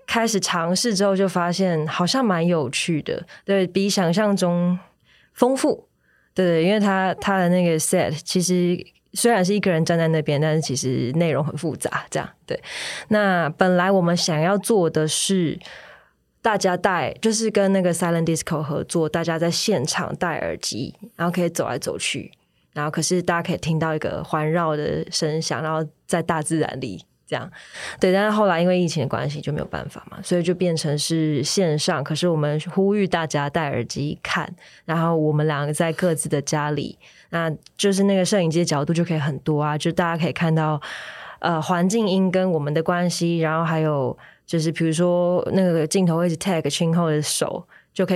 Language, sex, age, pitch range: Chinese, female, 20-39, 155-180 Hz